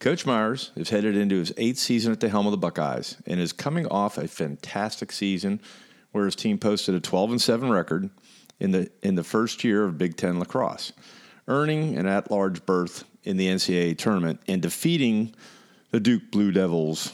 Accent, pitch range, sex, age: American, 85-105 Hz, male, 50-69